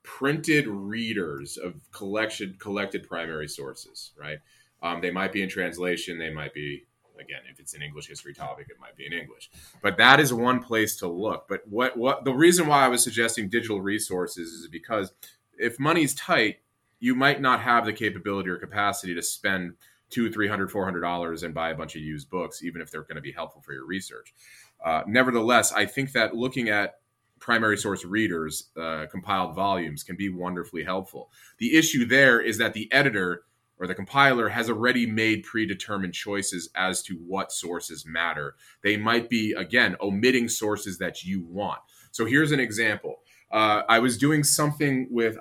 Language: English